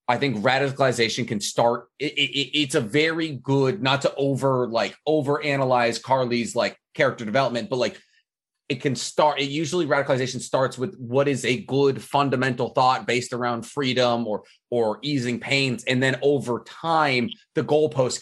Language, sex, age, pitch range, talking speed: English, male, 30-49, 110-140 Hz, 155 wpm